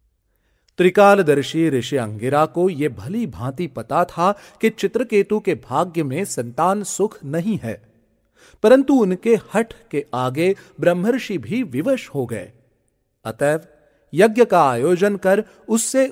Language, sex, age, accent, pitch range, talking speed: Hindi, male, 40-59, native, 125-205 Hz, 125 wpm